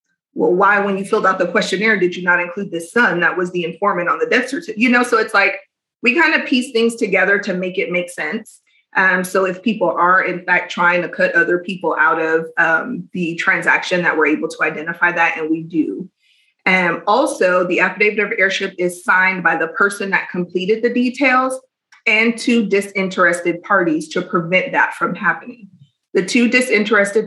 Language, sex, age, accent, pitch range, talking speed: English, female, 30-49, American, 170-215 Hz, 200 wpm